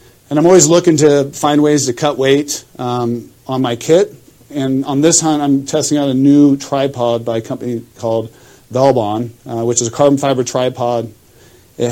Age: 40-59